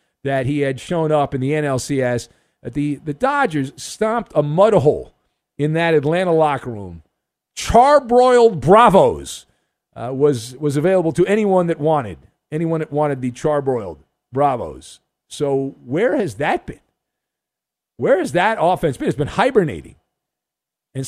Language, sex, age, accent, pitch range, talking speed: English, male, 50-69, American, 145-205 Hz, 145 wpm